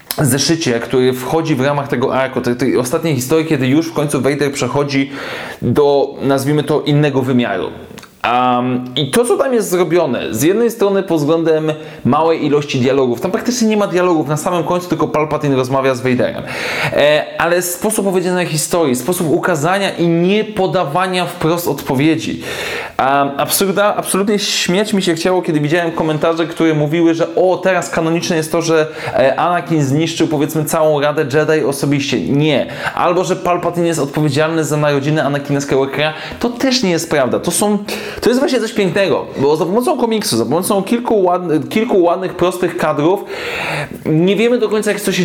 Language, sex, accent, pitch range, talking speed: Polish, male, native, 150-190 Hz, 170 wpm